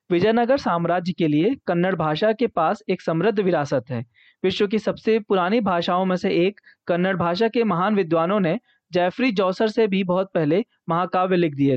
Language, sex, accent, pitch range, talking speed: Hindi, male, native, 165-215 Hz, 180 wpm